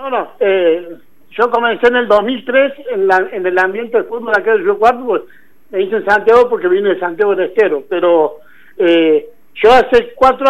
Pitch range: 210-270 Hz